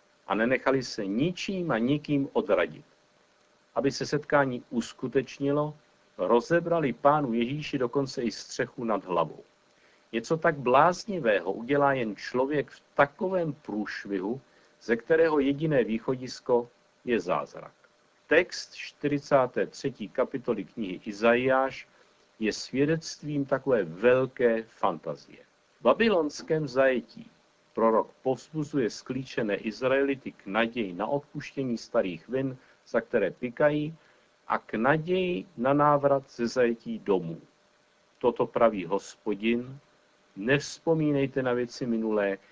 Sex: male